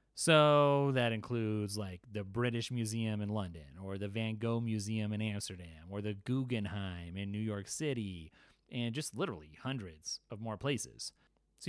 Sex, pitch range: male, 105-130 Hz